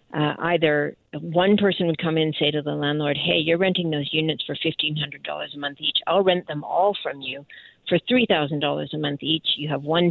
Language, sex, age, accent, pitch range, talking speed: English, female, 50-69, American, 150-170 Hz, 215 wpm